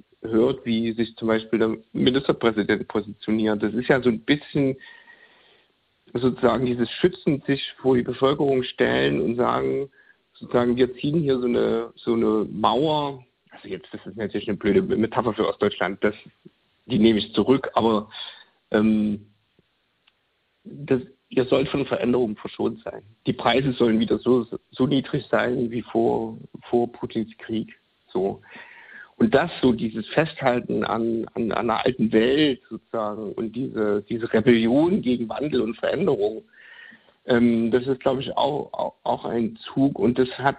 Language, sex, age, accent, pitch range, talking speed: German, male, 50-69, German, 110-135 Hz, 150 wpm